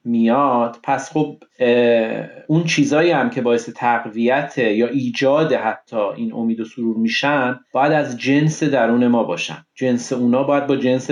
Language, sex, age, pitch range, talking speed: Persian, male, 40-59, 130-160 Hz, 150 wpm